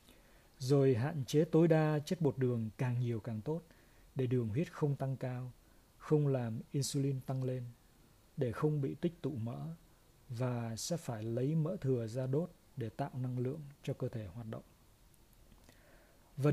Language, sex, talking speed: Vietnamese, male, 170 wpm